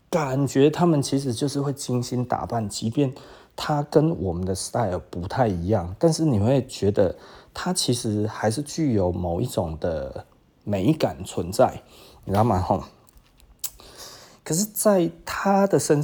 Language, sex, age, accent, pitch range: Chinese, male, 30-49, native, 100-140 Hz